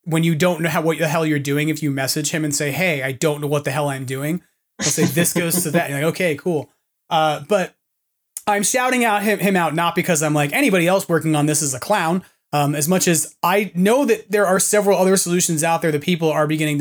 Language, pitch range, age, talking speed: English, 150-205 Hz, 30-49, 265 wpm